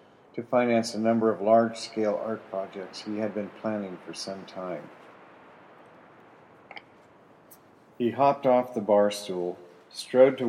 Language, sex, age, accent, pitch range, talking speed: English, male, 50-69, American, 100-115 Hz, 130 wpm